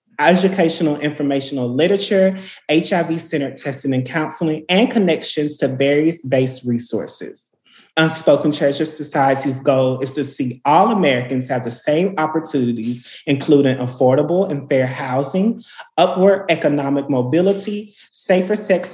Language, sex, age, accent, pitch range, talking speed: English, male, 30-49, American, 125-165 Hz, 115 wpm